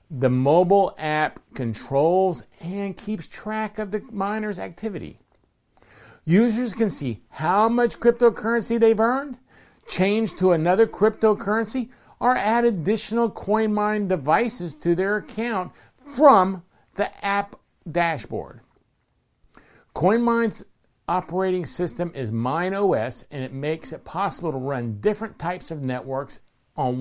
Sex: male